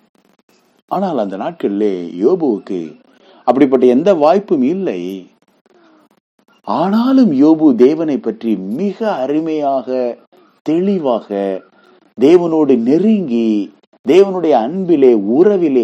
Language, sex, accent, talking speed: English, male, Indian, 95 wpm